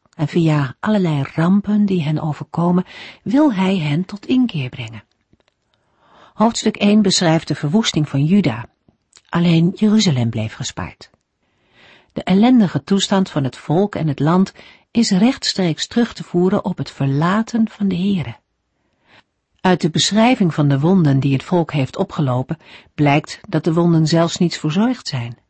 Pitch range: 150-205 Hz